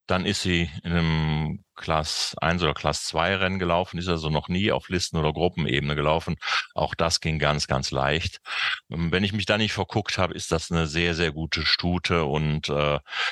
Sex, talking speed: male, 195 wpm